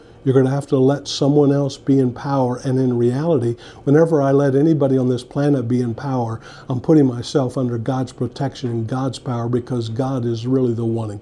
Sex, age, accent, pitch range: male, 50-69, American, 115-135 Hz